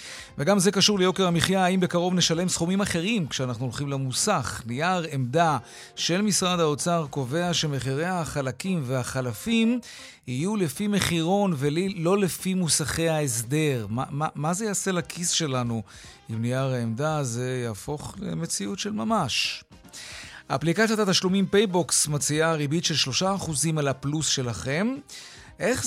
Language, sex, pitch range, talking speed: Hebrew, male, 135-185 Hz, 130 wpm